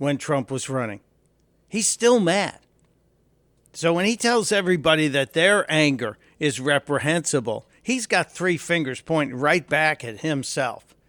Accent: American